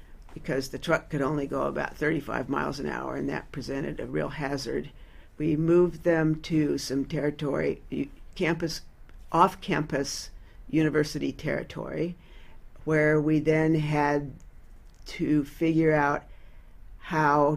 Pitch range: 130-160 Hz